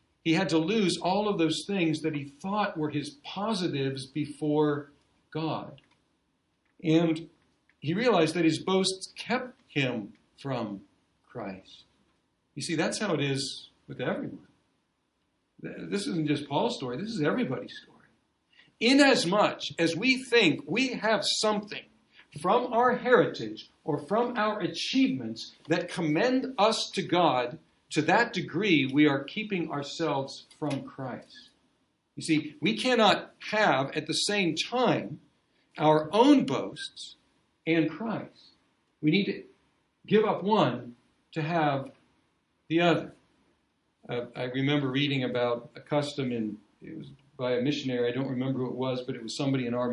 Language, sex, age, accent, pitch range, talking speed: English, male, 60-79, American, 135-190 Hz, 145 wpm